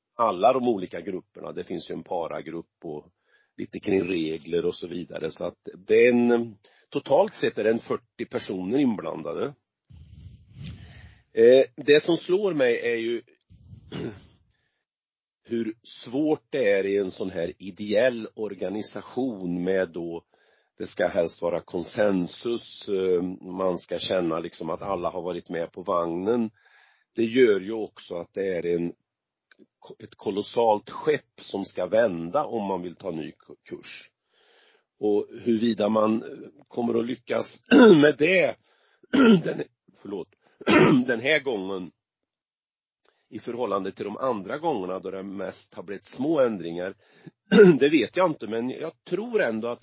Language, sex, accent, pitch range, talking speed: Swedish, male, native, 95-150 Hz, 140 wpm